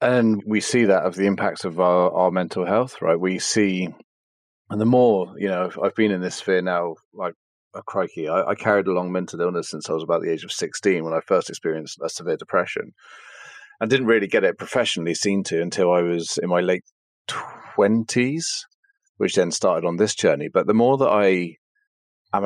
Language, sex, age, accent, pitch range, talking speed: English, male, 30-49, British, 90-125 Hz, 210 wpm